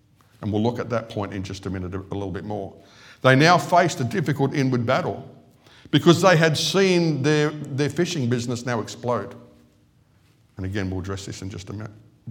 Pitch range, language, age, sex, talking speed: 105-130 Hz, English, 50-69, male, 195 wpm